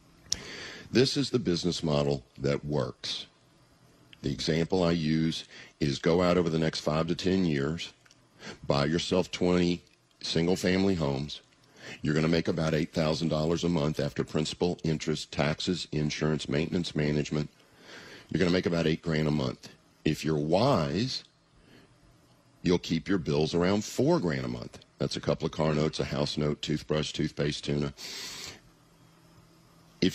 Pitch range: 75-90 Hz